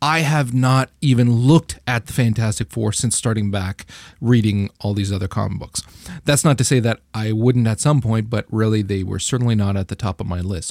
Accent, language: American, English